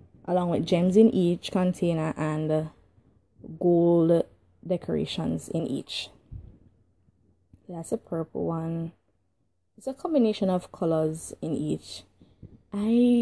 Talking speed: 105 wpm